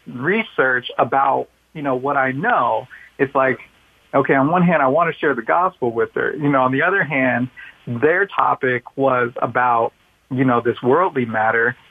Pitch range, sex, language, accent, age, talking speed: 125-160 Hz, male, English, American, 40-59, 180 wpm